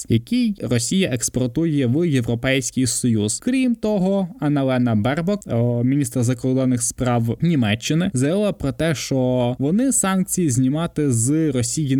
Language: Ukrainian